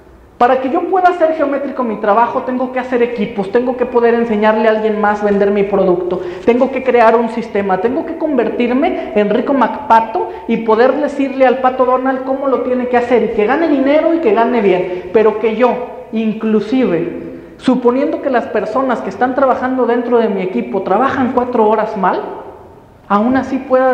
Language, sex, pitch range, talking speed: Spanish, male, 220-270 Hz, 185 wpm